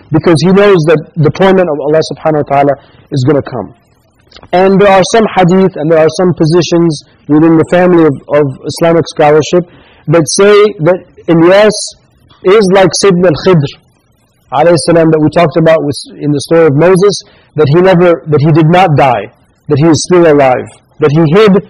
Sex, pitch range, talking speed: male, 150-185 Hz, 185 wpm